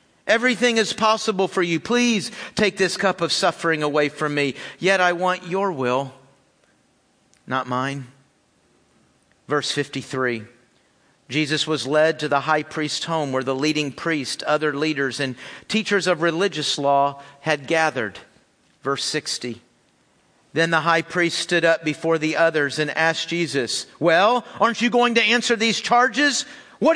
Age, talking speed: 50-69, 150 wpm